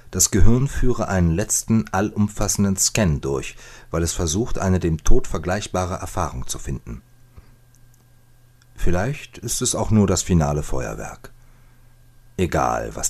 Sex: male